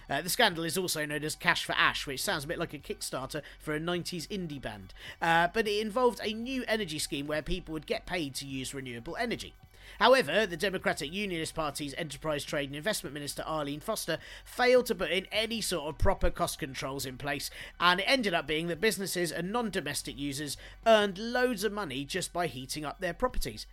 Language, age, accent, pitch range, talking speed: English, 40-59, British, 150-200 Hz, 210 wpm